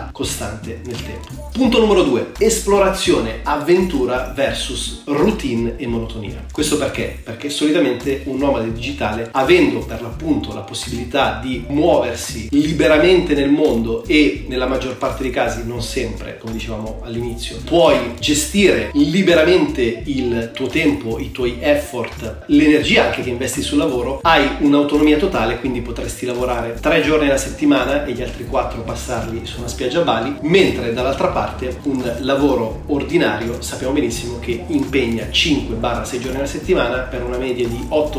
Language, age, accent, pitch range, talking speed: Italian, 30-49, native, 120-150 Hz, 150 wpm